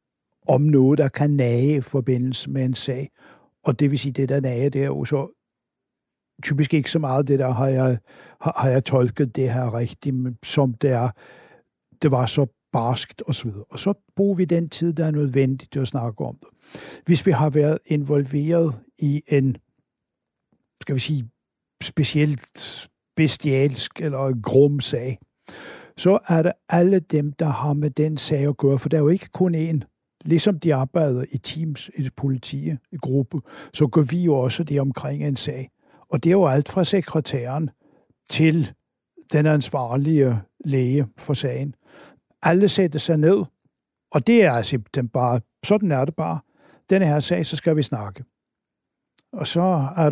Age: 60-79